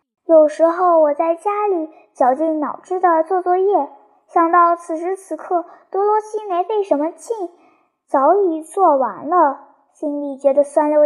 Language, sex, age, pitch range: Chinese, male, 10-29, 280-355 Hz